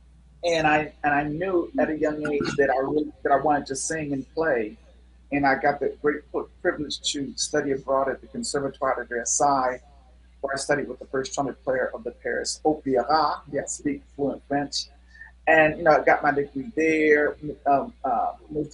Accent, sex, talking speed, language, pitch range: American, male, 195 wpm, English, 130-150 Hz